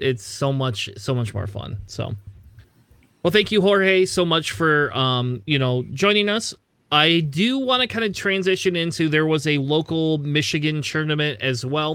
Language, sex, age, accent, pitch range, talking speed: English, male, 30-49, American, 125-170 Hz, 180 wpm